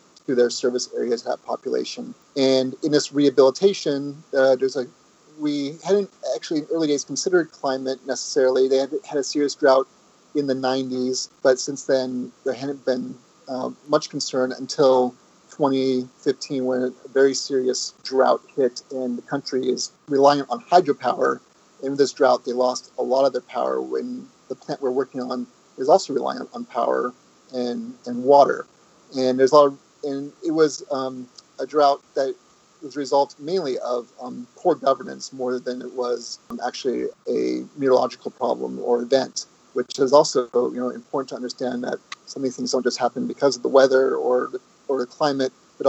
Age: 30-49